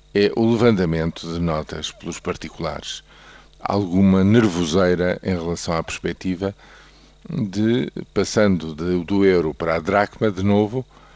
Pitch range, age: 80-100 Hz, 50-69